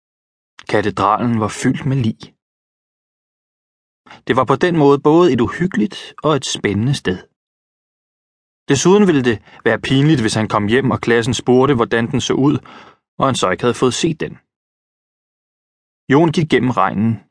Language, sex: Danish, male